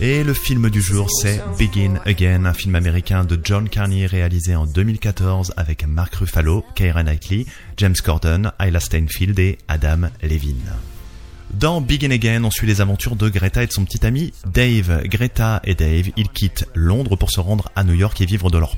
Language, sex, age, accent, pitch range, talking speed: French, male, 30-49, French, 85-110 Hz, 190 wpm